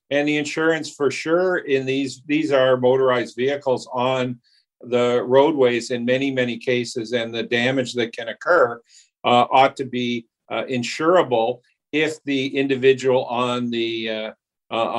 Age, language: 50-69, English